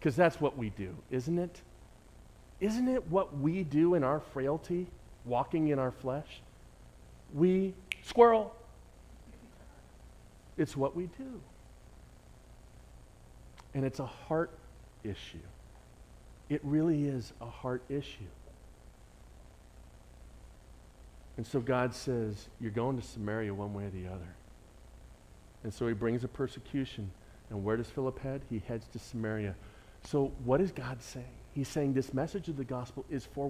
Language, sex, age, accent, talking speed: English, male, 40-59, American, 140 wpm